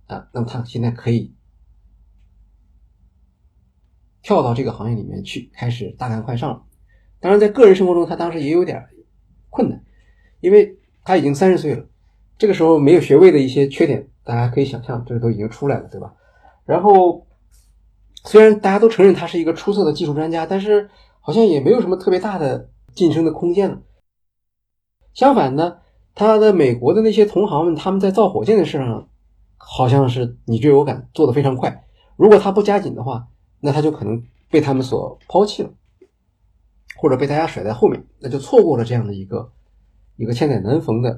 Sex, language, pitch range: male, Chinese, 105-165 Hz